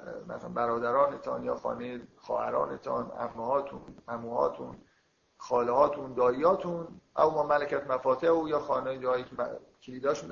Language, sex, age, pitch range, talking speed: Persian, male, 50-69, 120-150 Hz, 110 wpm